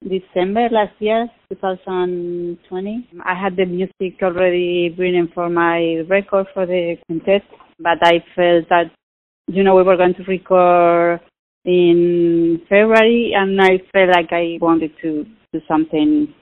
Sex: female